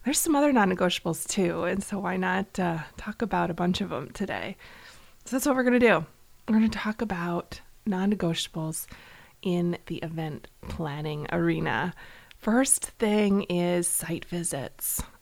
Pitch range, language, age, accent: 175-220 Hz, English, 20-39, American